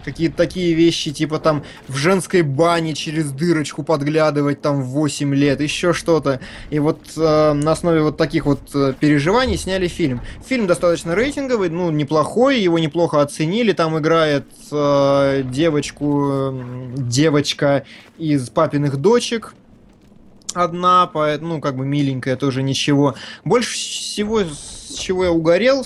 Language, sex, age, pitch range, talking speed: Russian, male, 20-39, 145-180 Hz, 135 wpm